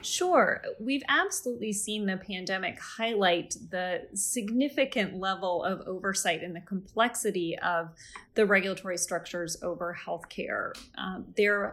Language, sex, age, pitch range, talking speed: English, female, 30-49, 180-210 Hz, 120 wpm